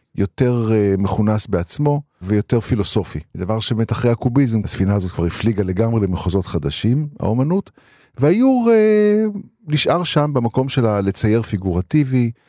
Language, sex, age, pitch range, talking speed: Hebrew, male, 50-69, 95-125 Hz, 120 wpm